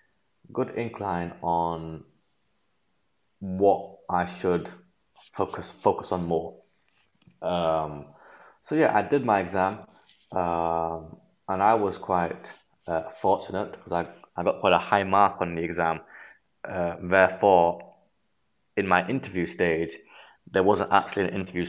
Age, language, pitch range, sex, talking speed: 20-39, Slovak, 85-95 Hz, male, 125 wpm